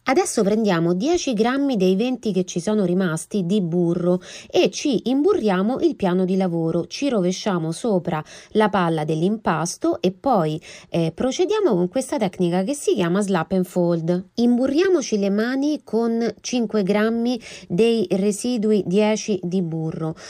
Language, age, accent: Italian, 30-49, native